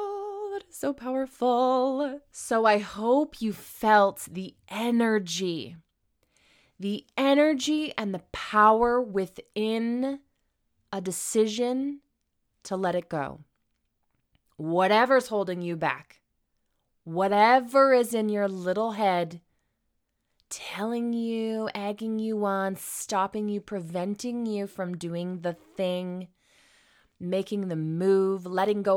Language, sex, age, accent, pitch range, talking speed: English, female, 20-39, American, 185-245 Hz, 100 wpm